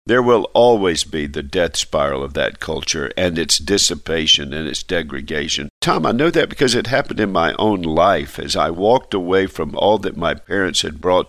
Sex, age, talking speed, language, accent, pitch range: male, 50-69, 200 wpm, English, American, 80-100 Hz